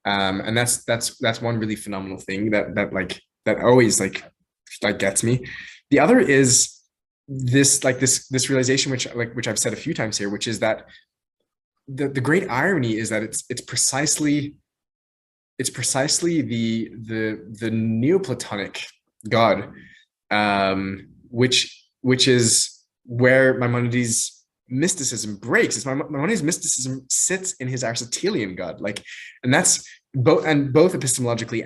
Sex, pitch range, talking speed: male, 100-130 Hz, 160 wpm